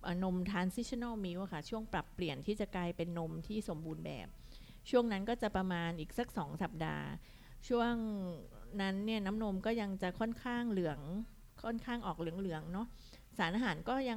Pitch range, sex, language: 170-210 Hz, female, Thai